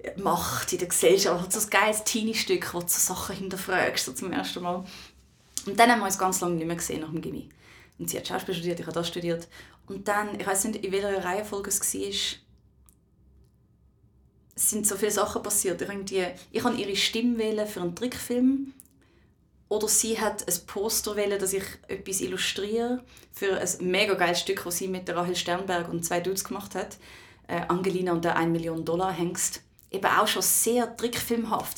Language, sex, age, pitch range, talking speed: German, female, 20-39, 180-215 Hz, 190 wpm